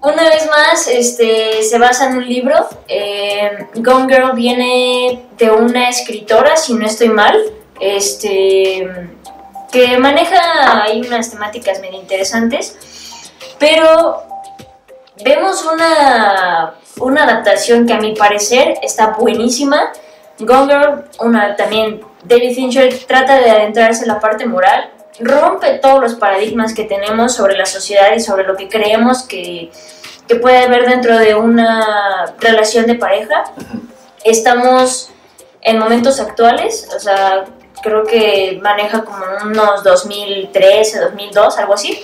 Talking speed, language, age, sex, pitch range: 125 wpm, Spanish, 10-29, female, 210-260 Hz